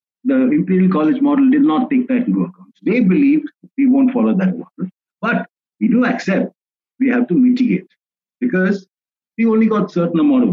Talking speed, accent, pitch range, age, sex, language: 190 wpm, Indian, 190-265 Hz, 50-69, male, English